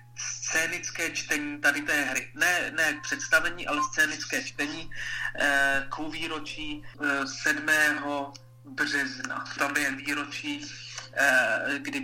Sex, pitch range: male, 135-165 Hz